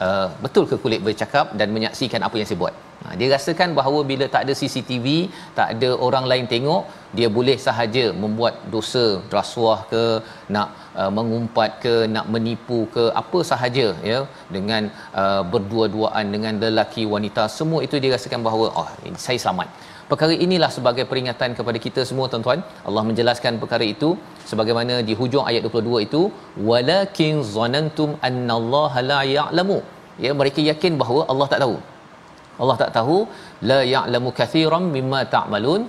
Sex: male